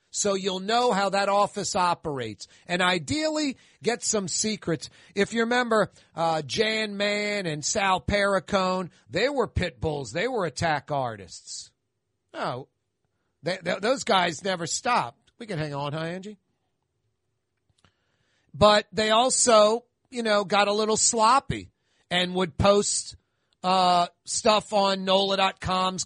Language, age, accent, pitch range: English, 40-59, American, 140-200 Hz